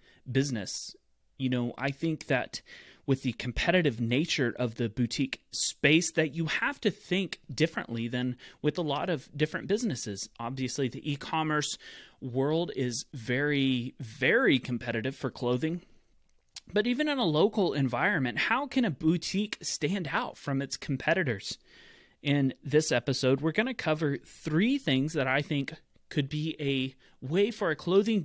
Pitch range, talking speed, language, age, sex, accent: 135-180 Hz, 150 wpm, English, 30-49, male, American